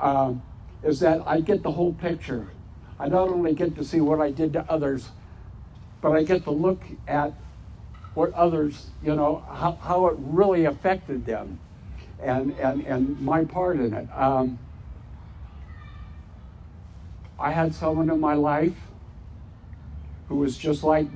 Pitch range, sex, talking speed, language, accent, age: 110-170 Hz, male, 150 wpm, English, American, 60-79